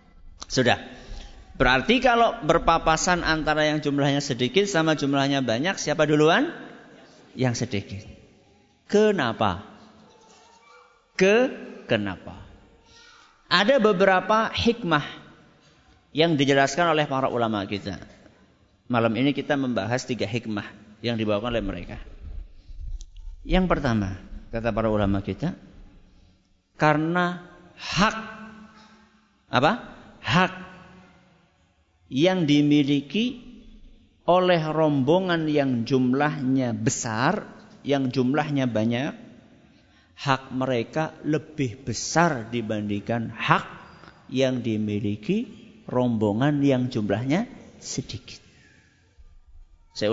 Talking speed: 85 wpm